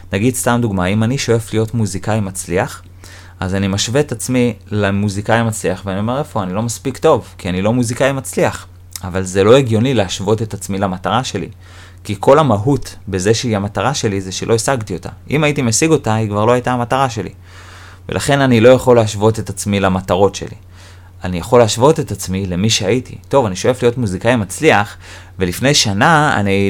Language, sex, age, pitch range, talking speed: Hebrew, male, 30-49, 95-120 Hz, 185 wpm